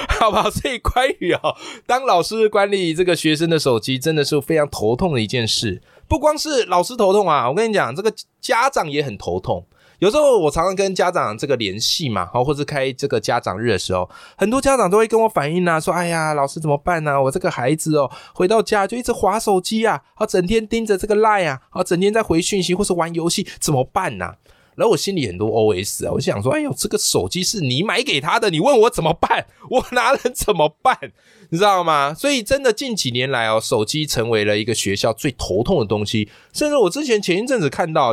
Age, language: 20-39, Chinese